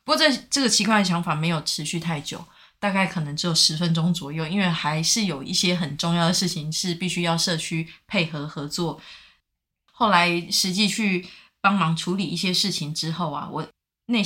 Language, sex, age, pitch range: Chinese, female, 20-39, 160-205 Hz